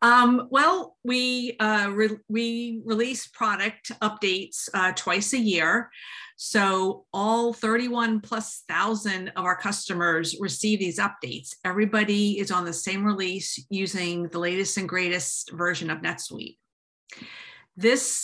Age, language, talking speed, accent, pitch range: 50-69, English, 130 wpm, American, 175-210 Hz